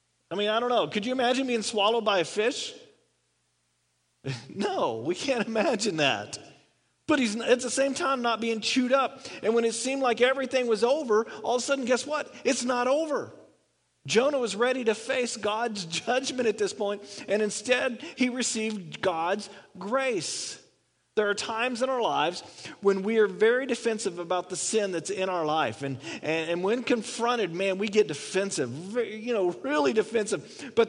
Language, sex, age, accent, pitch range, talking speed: English, male, 40-59, American, 165-235 Hz, 185 wpm